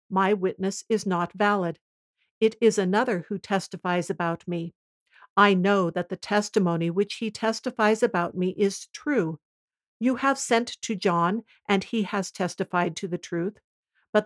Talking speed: 155 wpm